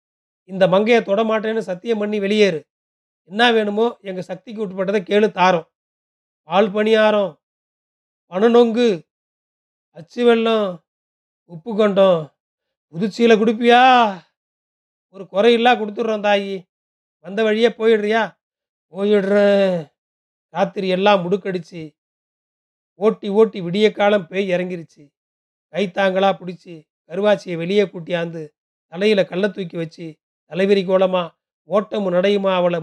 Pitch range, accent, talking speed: 175-215 Hz, native, 100 wpm